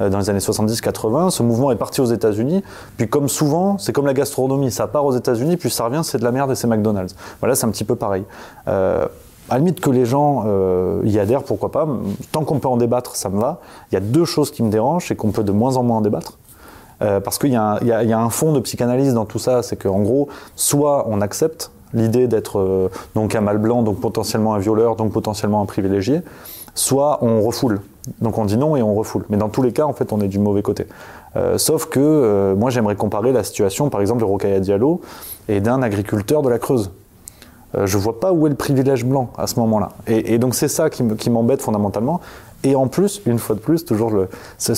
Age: 20-39